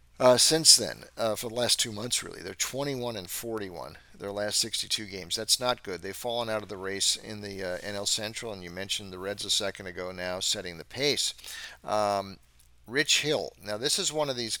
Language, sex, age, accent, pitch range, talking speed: English, male, 50-69, American, 100-125 Hz, 220 wpm